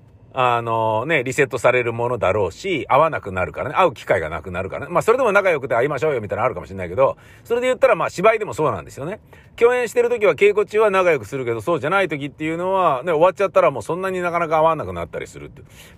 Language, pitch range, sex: Japanese, 150-235 Hz, male